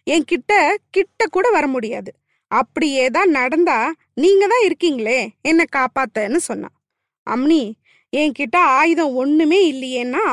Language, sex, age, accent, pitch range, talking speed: Tamil, female, 20-39, native, 250-355 Hz, 110 wpm